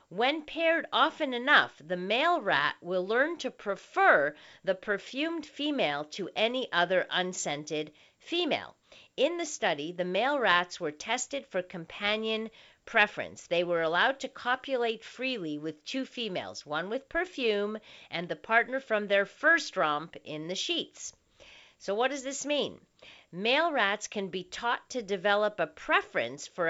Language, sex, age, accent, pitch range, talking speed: English, female, 50-69, American, 175-265 Hz, 150 wpm